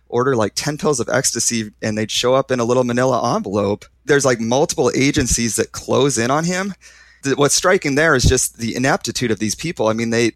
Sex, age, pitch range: male, 30-49, 110-140 Hz